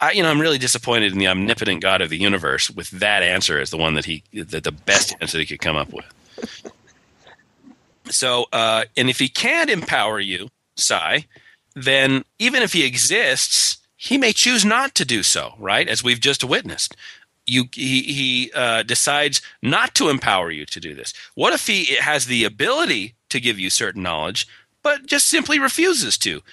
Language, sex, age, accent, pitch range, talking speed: English, male, 40-59, American, 120-200 Hz, 190 wpm